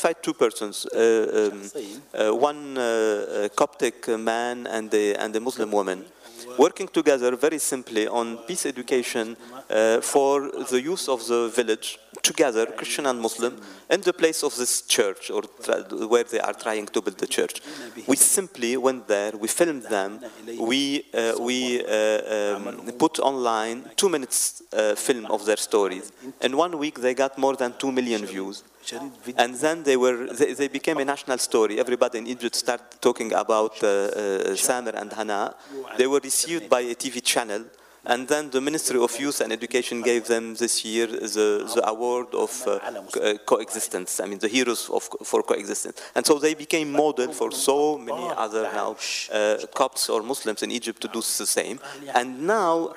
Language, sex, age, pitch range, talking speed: English, male, 40-59, 115-165 Hz, 175 wpm